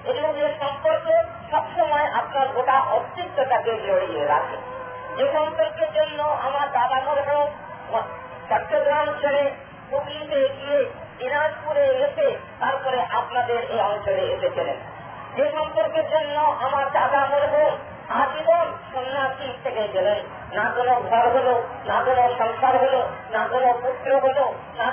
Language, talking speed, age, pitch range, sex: Bengali, 90 wpm, 40-59, 250-300 Hz, male